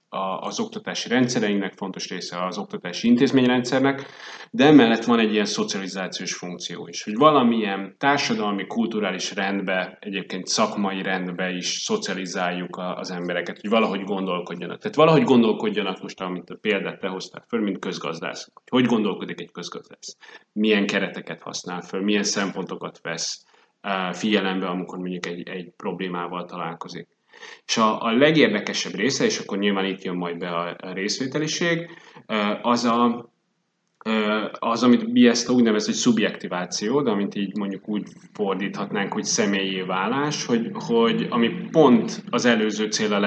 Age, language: 30-49, Hungarian